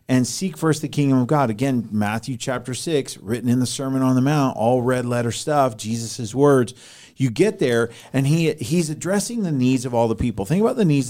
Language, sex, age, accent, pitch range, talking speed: English, male, 40-59, American, 120-145 Hz, 215 wpm